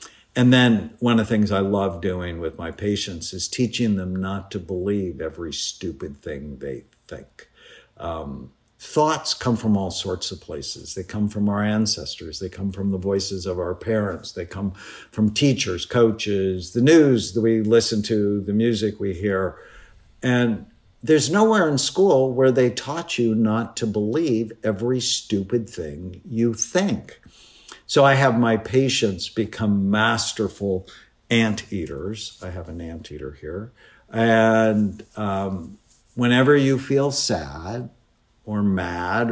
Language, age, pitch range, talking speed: English, 60-79, 100-120 Hz, 150 wpm